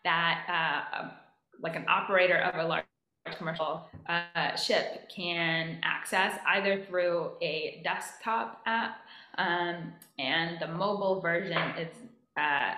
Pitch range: 170-210 Hz